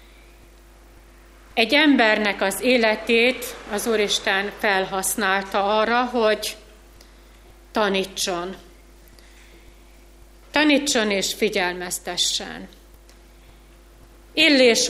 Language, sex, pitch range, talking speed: Hungarian, female, 195-235 Hz, 55 wpm